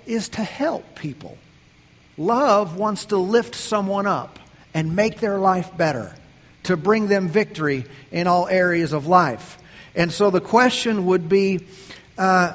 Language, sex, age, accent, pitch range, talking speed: English, male, 50-69, American, 140-215 Hz, 150 wpm